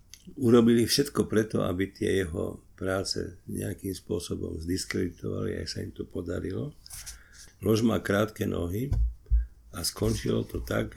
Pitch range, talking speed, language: 90-105 Hz, 125 wpm, Slovak